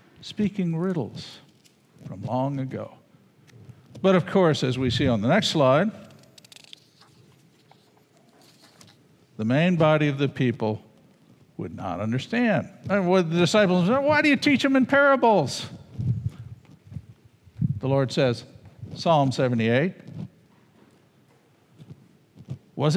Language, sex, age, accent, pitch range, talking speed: English, male, 60-79, American, 130-190 Hz, 105 wpm